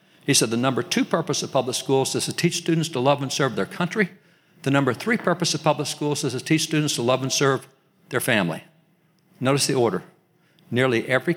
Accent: American